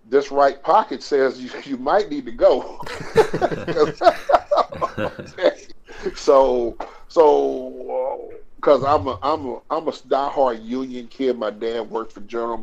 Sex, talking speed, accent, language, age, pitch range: male, 130 wpm, American, English, 40-59, 110-140 Hz